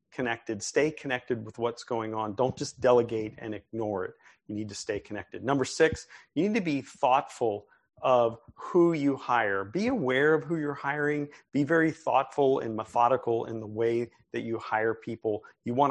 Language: English